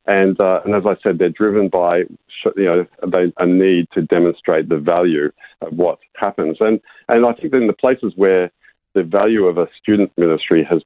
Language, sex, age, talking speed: English, male, 50-69, 180 wpm